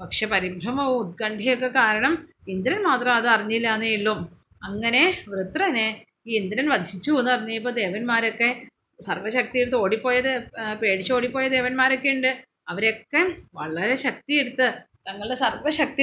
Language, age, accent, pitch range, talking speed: Malayalam, 30-49, native, 215-265 Hz, 105 wpm